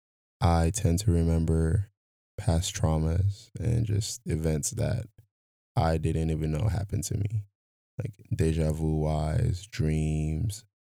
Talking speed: 120 wpm